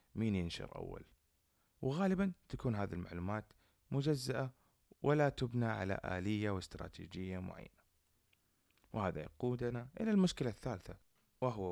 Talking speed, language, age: 100 wpm, Arabic, 30-49